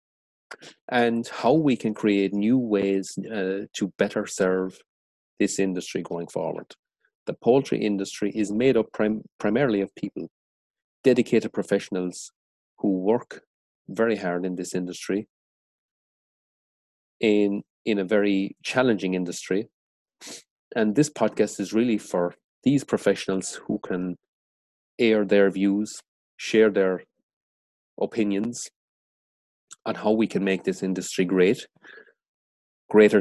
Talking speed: 115 wpm